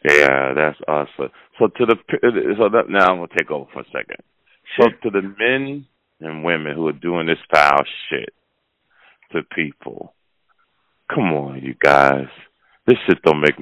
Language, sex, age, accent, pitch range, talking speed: English, male, 40-59, American, 75-90 Hz, 165 wpm